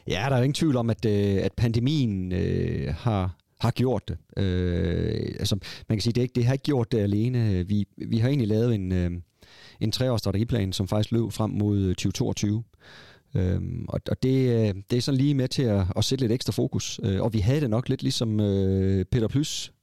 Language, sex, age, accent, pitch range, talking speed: Danish, male, 40-59, native, 100-120 Hz, 220 wpm